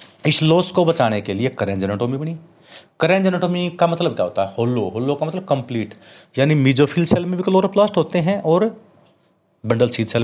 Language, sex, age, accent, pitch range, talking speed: Hindi, male, 30-49, native, 120-170 Hz, 190 wpm